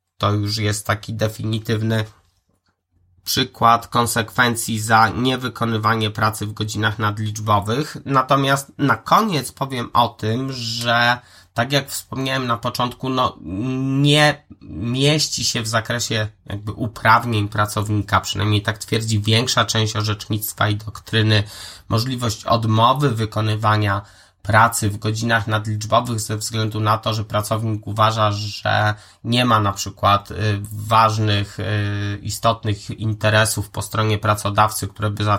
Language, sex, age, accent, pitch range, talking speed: Polish, male, 20-39, native, 105-115 Hz, 120 wpm